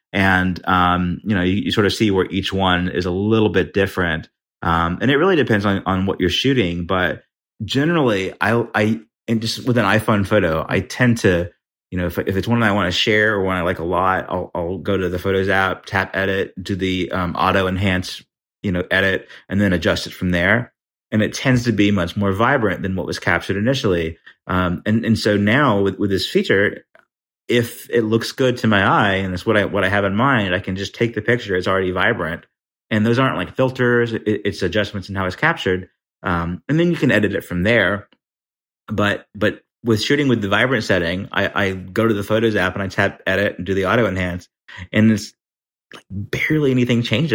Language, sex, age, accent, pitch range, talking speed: English, male, 30-49, American, 90-115 Hz, 225 wpm